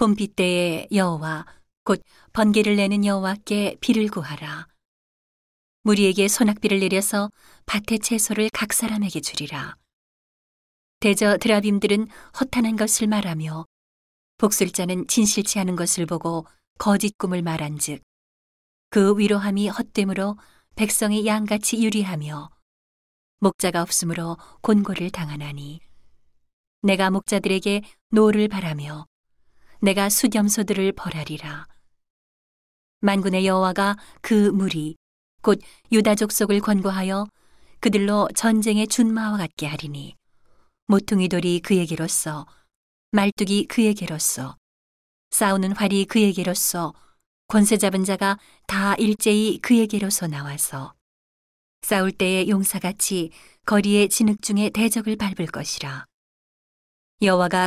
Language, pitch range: Korean, 170-210 Hz